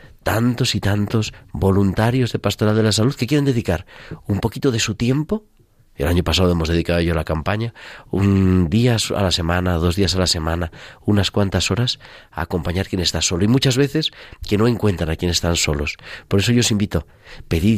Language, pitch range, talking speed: Spanish, 85-110 Hz, 205 wpm